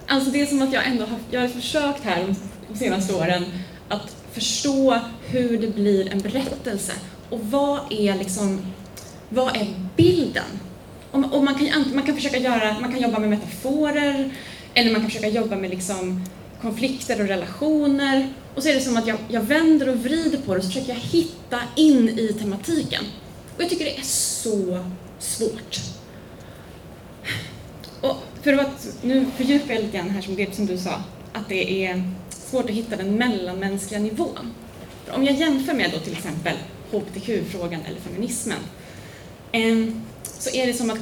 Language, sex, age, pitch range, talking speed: Swedish, female, 20-39, 195-270 Hz, 175 wpm